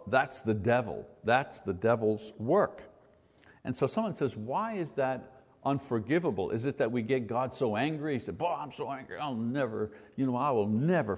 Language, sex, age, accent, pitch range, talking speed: English, male, 60-79, American, 120-175 Hz, 195 wpm